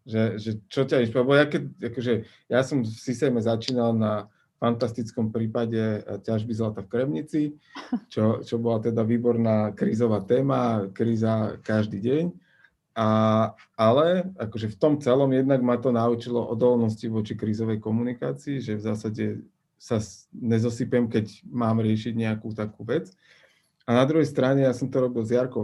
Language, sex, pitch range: Slovak, male, 110-125 Hz